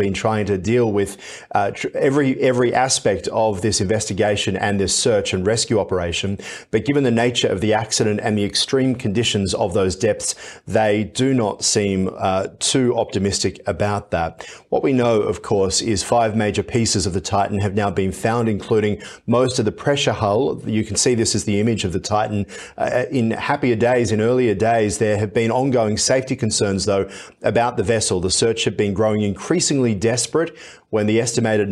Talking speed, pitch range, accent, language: 190 wpm, 100-120 Hz, Australian, English